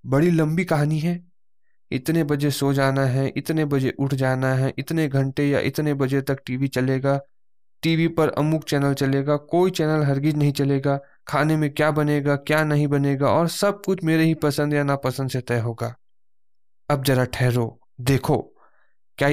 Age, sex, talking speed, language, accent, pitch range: 20-39, male, 175 wpm, Hindi, native, 130-160 Hz